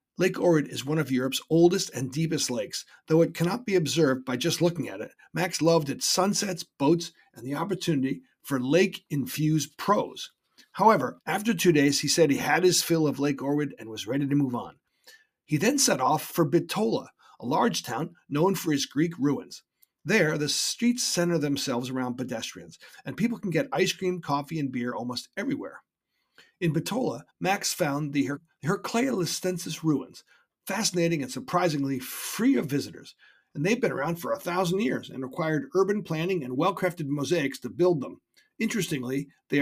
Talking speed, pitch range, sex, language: 175 wpm, 140-180 Hz, male, English